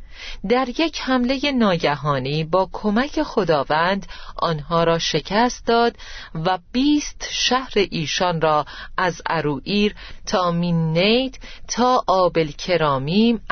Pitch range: 160-220 Hz